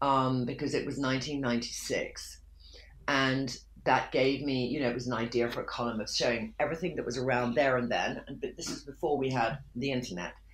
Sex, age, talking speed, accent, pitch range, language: female, 40-59, 200 wpm, British, 115-145 Hz, English